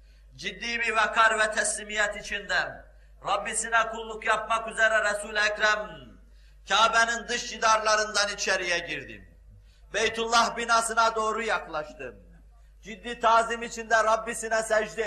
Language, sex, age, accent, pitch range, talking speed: Turkish, male, 50-69, native, 205-235 Hz, 105 wpm